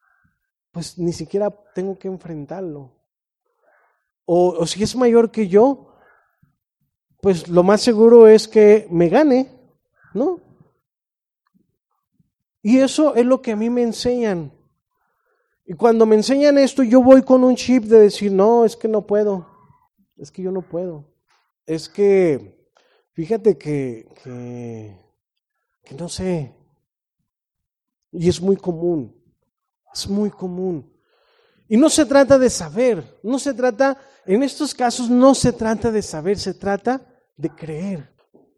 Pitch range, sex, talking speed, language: 170-240 Hz, male, 140 wpm, Spanish